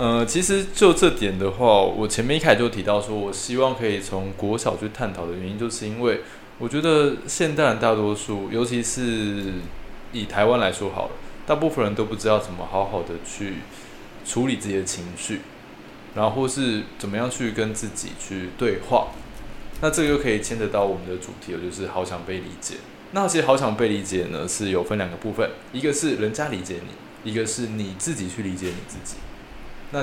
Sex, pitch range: male, 100-120 Hz